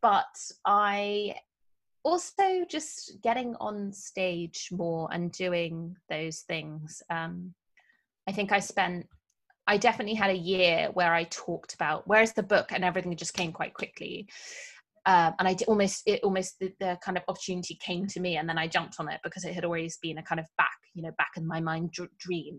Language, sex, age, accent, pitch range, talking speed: English, female, 20-39, British, 170-195 Hz, 190 wpm